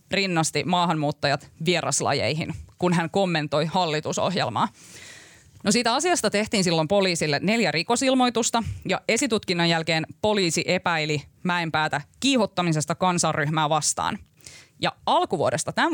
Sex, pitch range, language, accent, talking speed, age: female, 160-210 Hz, Finnish, native, 100 wpm, 20-39